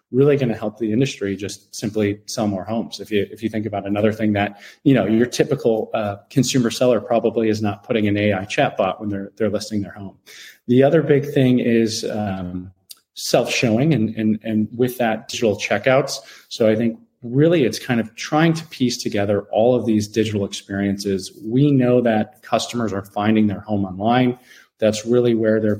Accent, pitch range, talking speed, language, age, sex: American, 105-120 Hz, 195 wpm, English, 30-49, male